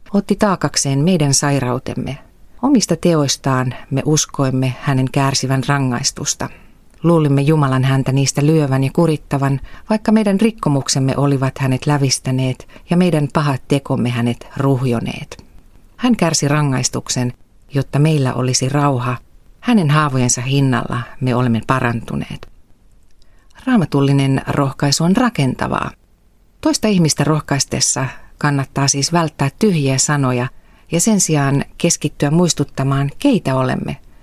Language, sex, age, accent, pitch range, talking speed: Finnish, female, 40-59, native, 130-155 Hz, 110 wpm